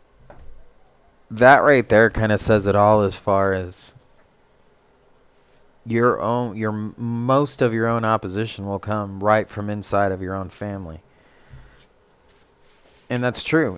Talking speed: 135 wpm